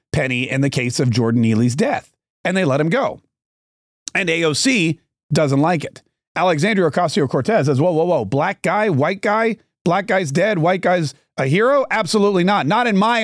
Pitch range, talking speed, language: 140-195 Hz, 180 wpm, English